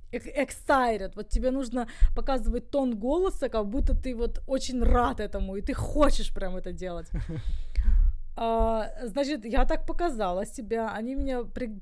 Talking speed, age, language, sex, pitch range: 140 wpm, 20-39, English, female, 215-265 Hz